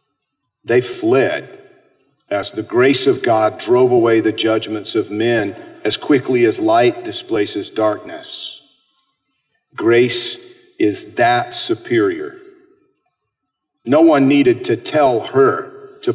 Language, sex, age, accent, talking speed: English, male, 50-69, American, 110 wpm